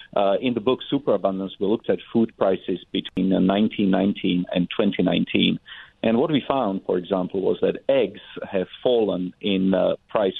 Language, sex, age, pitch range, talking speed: English, male, 40-59, 95-120 Hz, 165 wpm